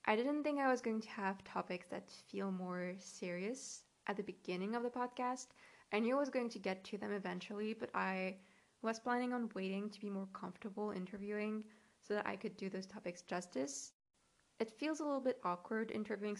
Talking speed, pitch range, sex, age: 200 wpm, 190-225 Hz, female, 20-39